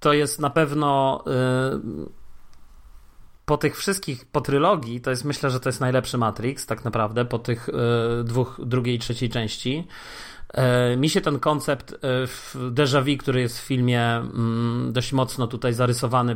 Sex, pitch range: male, 120-145 Hz